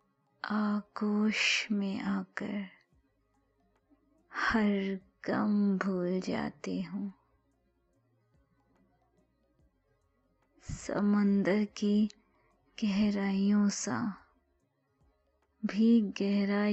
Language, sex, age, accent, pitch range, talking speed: Hindi, female, 20-39, native, 135-210 Hz, 50 wpm